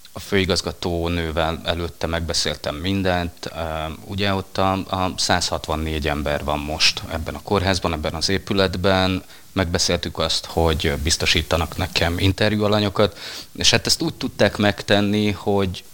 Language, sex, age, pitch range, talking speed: Hungarian, male, 30-49, 85-100 Hz, 115 wpm